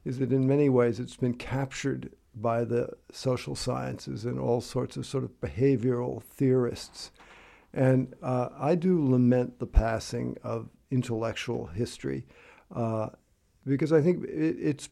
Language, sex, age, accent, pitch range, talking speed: English, male, 60-79, American, 120-140 Hz, 140 wpm